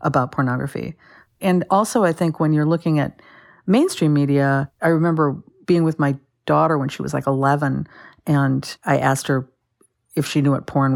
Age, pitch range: 50-69, 140-165 Hz